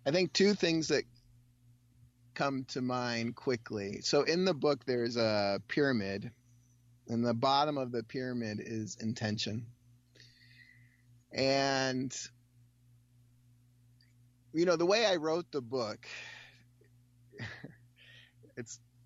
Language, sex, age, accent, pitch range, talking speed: English, male, 30-49, American, 110-135 Hz, 105 wpm